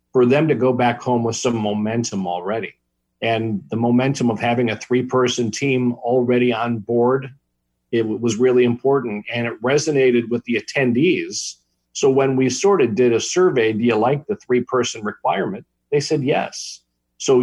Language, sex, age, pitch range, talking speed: English, male, 50-69, 110-130 Hz, 170 wpm